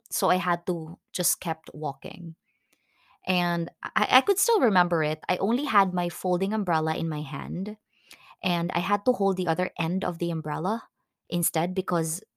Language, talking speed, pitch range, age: English, 175 wpm, 165-195 Hz, 20-39